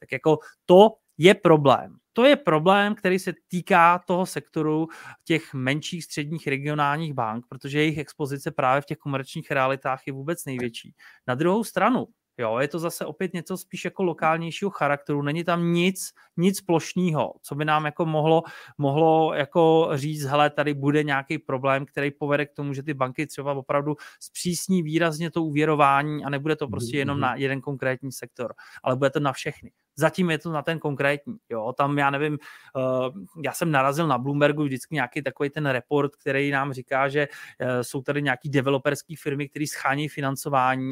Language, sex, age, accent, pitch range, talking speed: Czech, male, 30-49, native, 135-160 Hz, 175 wpm